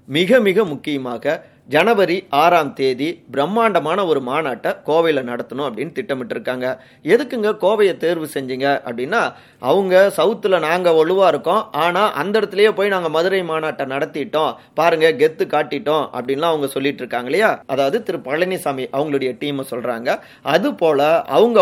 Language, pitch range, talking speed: Tamil, 135-185 Hz, 130 wpm